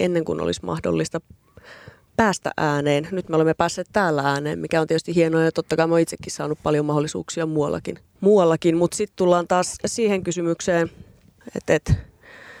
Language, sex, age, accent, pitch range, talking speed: Finnish, female, 30-49, native, 155-175 Hz, 150 wpm